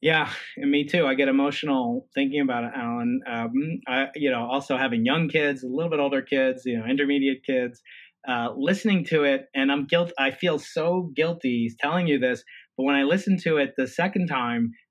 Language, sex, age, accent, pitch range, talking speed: English, male, 30-49, American, 140-190 Hz, 205 wpm